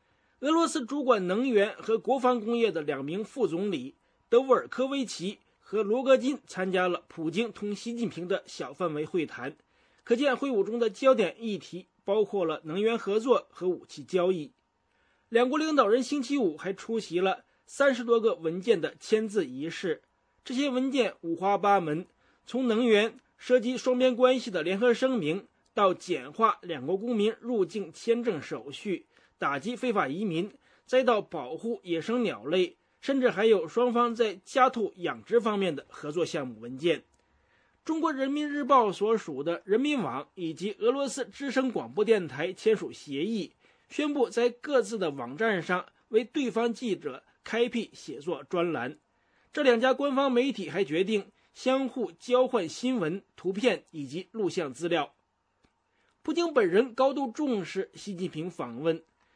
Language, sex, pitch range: English, male, 185-255 Hz